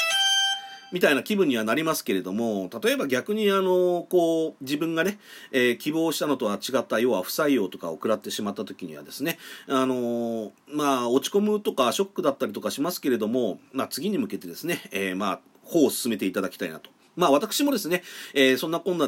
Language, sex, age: Japanese, male, 40-59